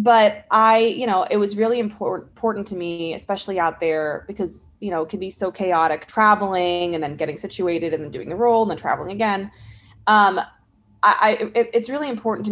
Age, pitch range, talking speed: 20-39, 165-215 Hz, 210 wpm